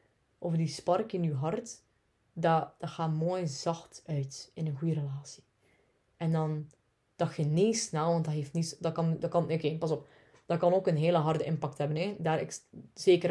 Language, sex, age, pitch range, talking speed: Dutch, female, 20-39, 145-165 Hz, 155 wpm